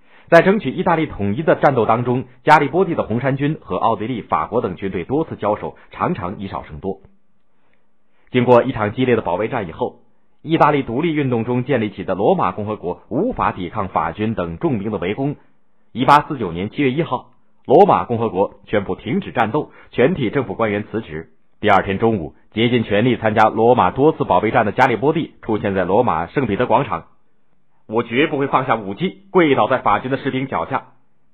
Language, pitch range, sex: Chinese, 100-135 Hz, male